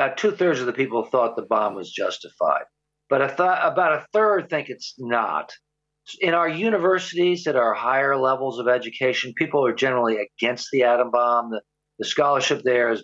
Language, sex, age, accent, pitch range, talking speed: English, male, 50-69, American, 120-150 Hz, 190 wpm